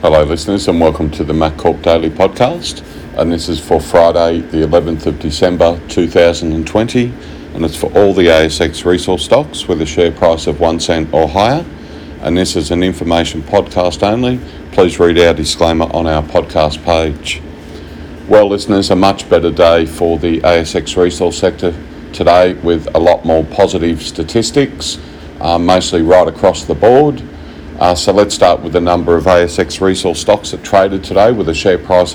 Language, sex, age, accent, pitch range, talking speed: English, male, 50-69, Australian, 80-95 Hz, 175 wpm